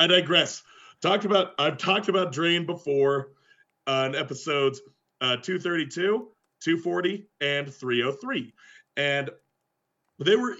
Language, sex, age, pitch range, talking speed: English, male, 30-49, 130-180 Hz, 115 wpm